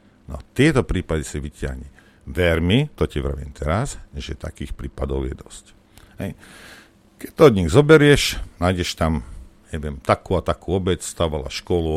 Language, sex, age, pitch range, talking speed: Slovak, male, 50-69, 80-105 Hz, 150 wpm